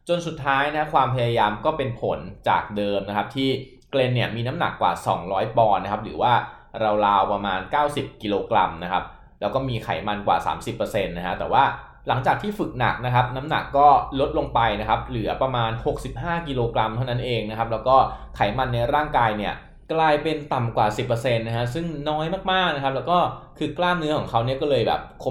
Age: 20-39